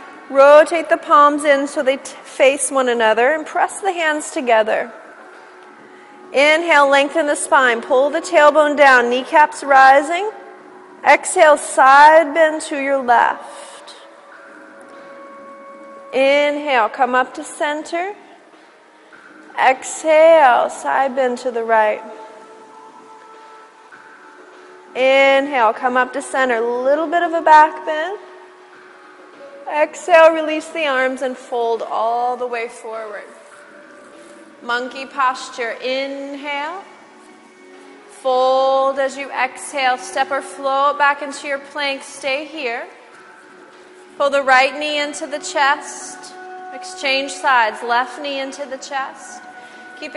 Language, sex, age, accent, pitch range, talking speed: English, female, 30-49, American, 265-315 Hz, 110 wpm